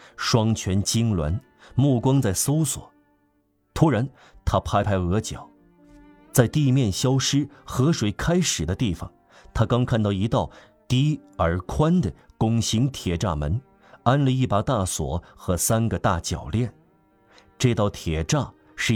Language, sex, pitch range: Chinese, male, 95-130 Hz